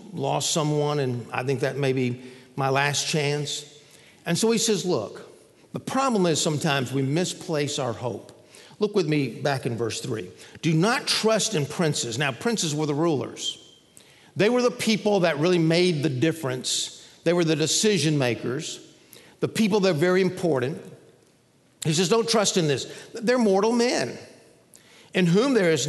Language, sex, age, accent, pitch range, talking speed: English, male, 50-69, American, 150-220 Hz, 170 wpm